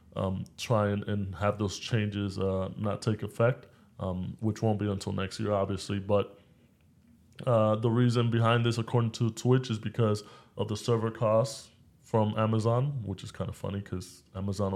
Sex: male